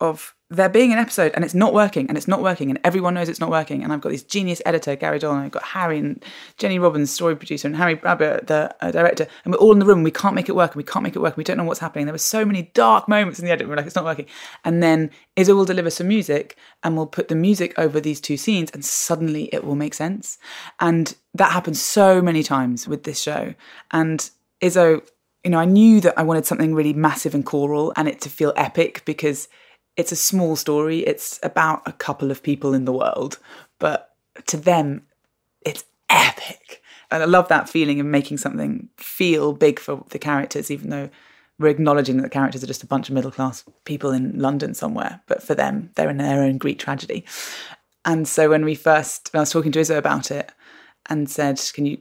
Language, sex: English, female